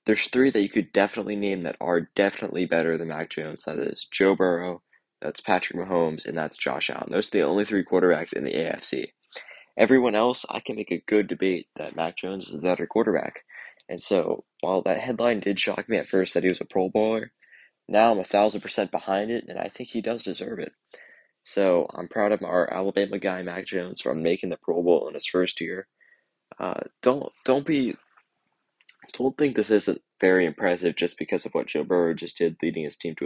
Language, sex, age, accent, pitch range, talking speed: English, male, 20-39, American, 90-110 Hz, 215 wpm